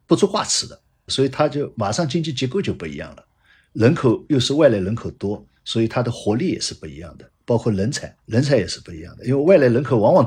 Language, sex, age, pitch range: Chinese, male, 60-79, 100-140 Hz